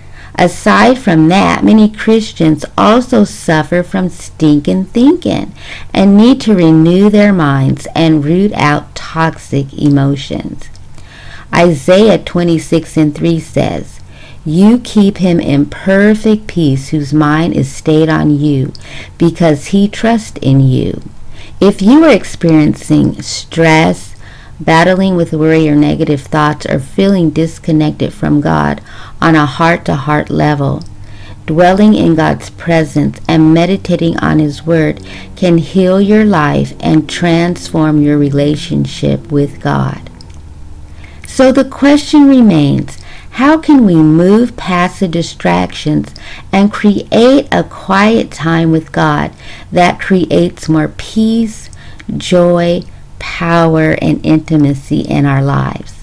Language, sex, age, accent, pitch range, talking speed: English, female, 40-59, American, 145-195 Hz, 120 wpm